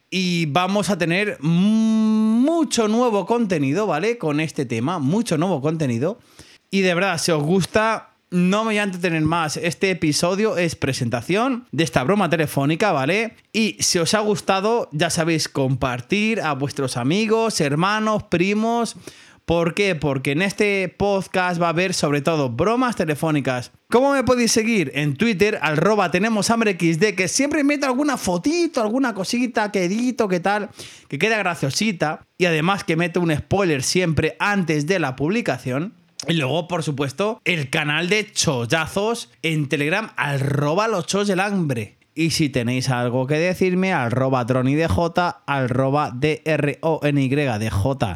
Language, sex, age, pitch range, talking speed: Spanish, male, 30-49, 150-210 Hz, 145 wpm